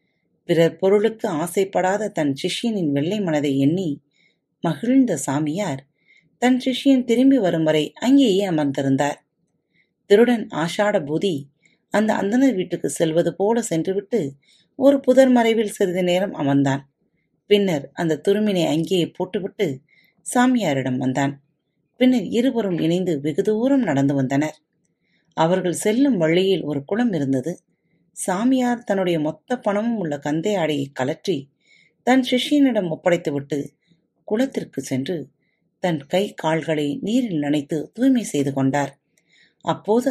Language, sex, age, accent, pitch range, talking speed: Tamil, female, 30-49, native, 150-215 Hz, 105 wpm